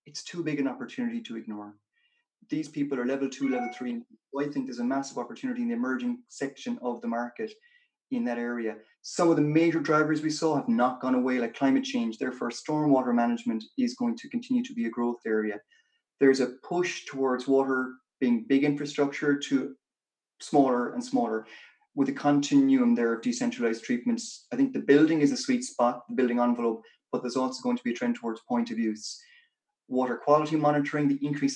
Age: 30-49